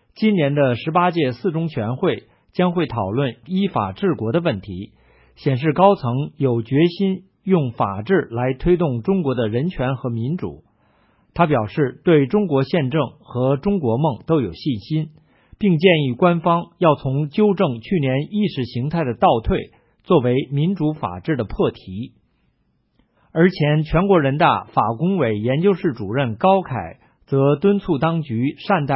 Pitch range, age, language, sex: 125-175 Hz, 50-69, English, male